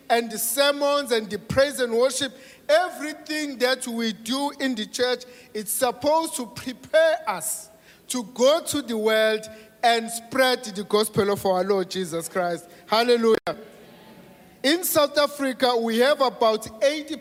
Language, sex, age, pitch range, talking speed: English, male, 50-69, 230-300 Hz, 145 wpm